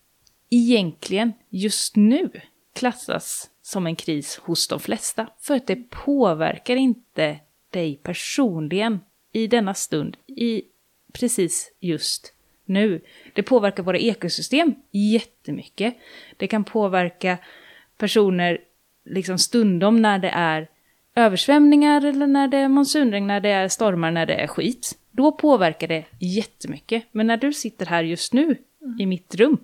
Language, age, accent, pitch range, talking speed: Swedish, 30-49, native, 175-250 Hz, 130 wpm